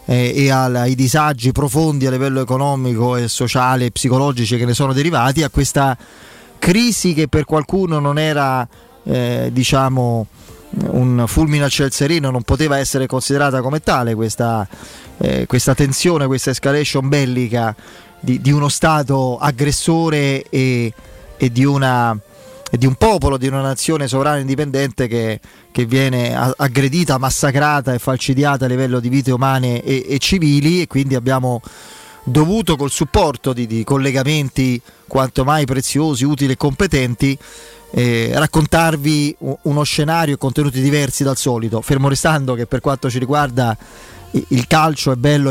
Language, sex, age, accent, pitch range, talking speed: Italian, male, 20-39, native, 125-150 Hz, 145 wpm